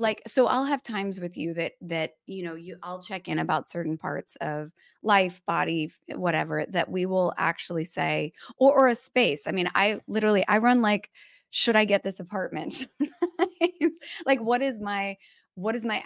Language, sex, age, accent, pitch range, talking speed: English, female, 20-39, American, 170-225 Hz, 185 wpm